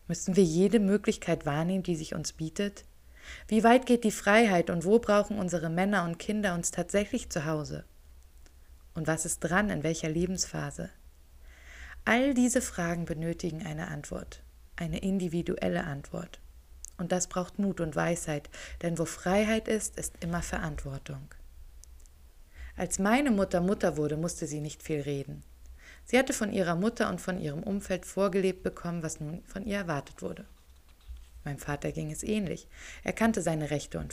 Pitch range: 135-195 Hz